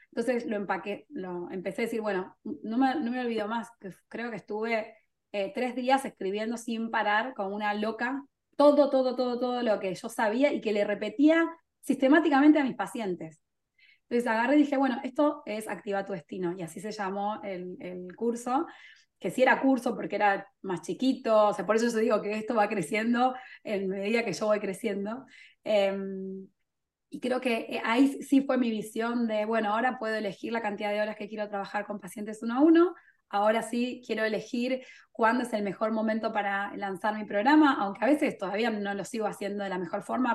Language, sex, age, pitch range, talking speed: Spanish, female, 20-39, 205-265 Hz, 200 wpm